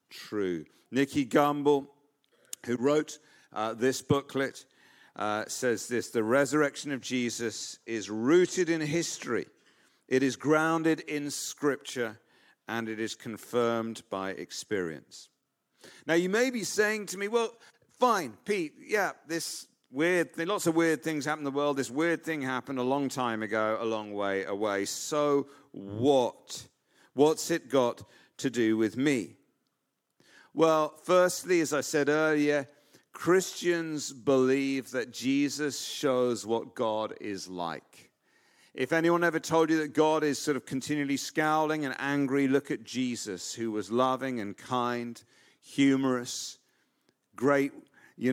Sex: male